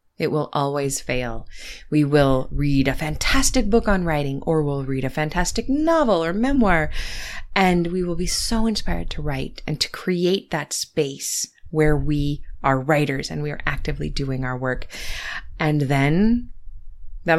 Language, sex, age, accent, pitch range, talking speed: English, female, 20-39, American, 135-185 Hz, 160 wpm